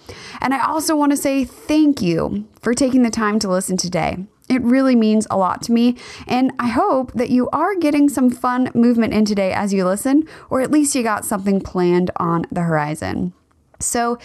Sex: female